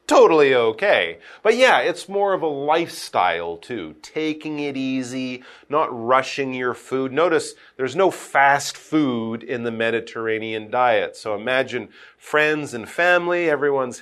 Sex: male